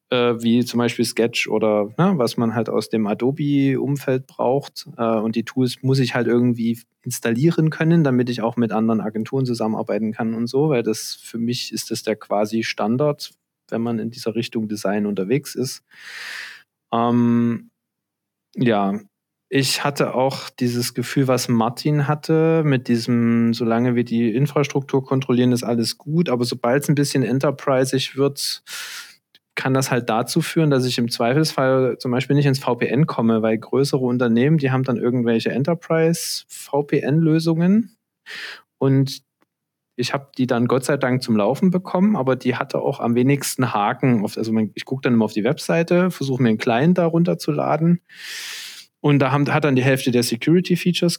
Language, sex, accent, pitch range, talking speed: German, male, German, 115-145 Hz, 165 wpm